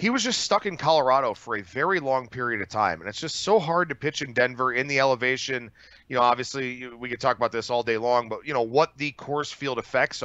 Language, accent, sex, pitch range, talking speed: English, American, male, 125-175 Hz, 260 wpm